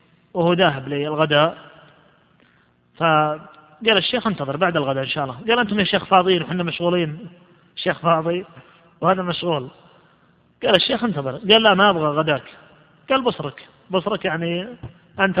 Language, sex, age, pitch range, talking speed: Arabic, male, 30-49, 160-190 Hz, 135 wpm